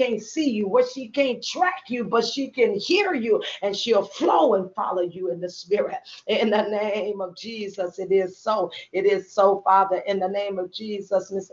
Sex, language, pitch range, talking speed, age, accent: female, English, 190-225 Hz, 210 wpm, 40-59, American